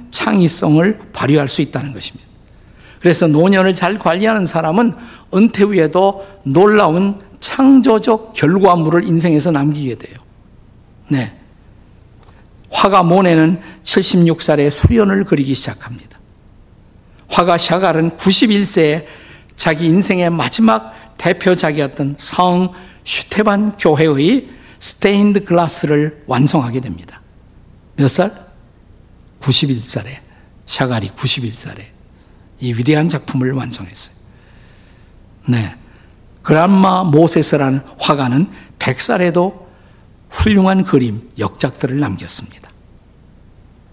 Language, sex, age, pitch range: Korean, male, 50-69, 115-175 Hz